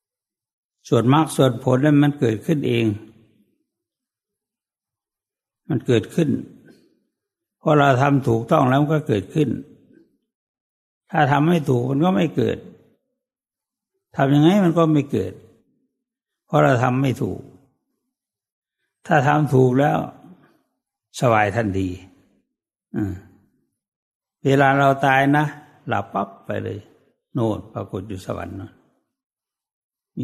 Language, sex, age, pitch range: English, male, 60-79, 115-155 Hz